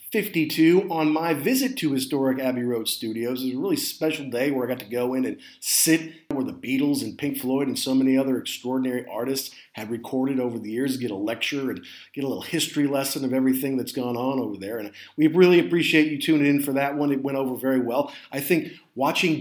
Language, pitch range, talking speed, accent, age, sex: English, 130-160 Hz, 225 wpm, American, 40-59, male